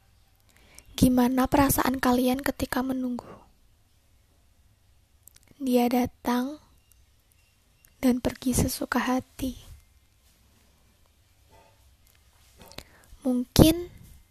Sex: female